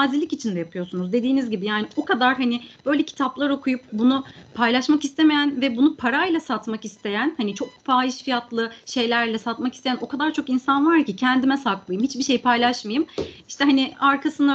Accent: native